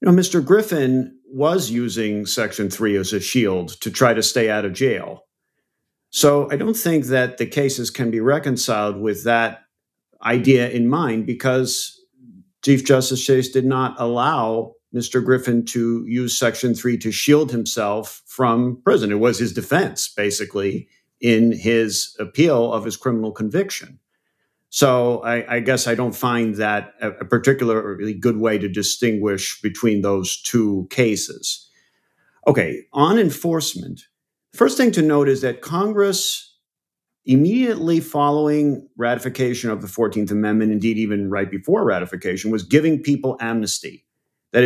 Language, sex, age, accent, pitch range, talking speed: English, male, 50-69, American, 110-135 Hz, 145 wpm